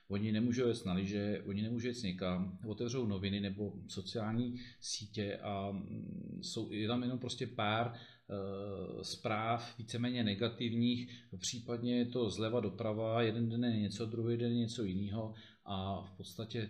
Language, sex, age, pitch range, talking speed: Czech, male, 40-59, 100-115 Hz, 150 wpm